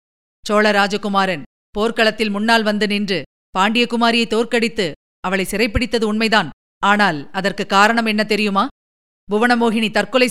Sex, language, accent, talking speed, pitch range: female, Tamil, native, 95 wpm, 200-235 Hz